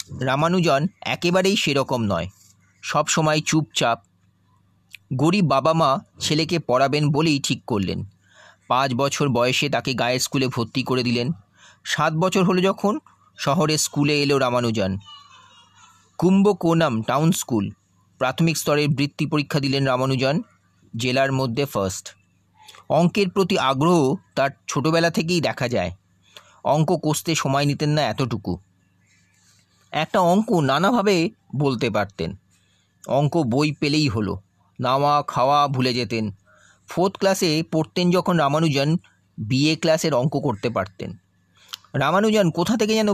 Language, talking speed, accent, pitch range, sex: Bengali, 110 wpm, native, 105-165 Hz, male